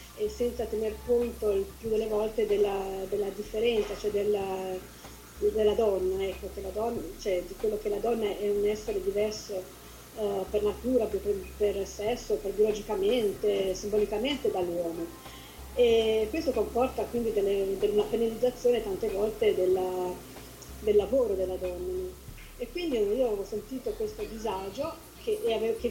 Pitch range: 200-250 Hz